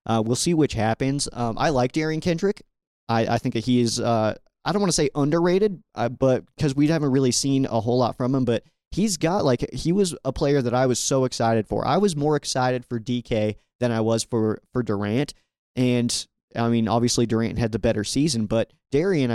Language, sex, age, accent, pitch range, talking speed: English, male, 20-39, American, 115-145 Hz, 220 wpm